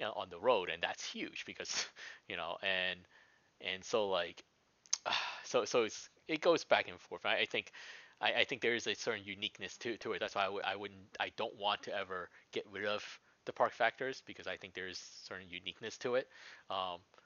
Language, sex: English, male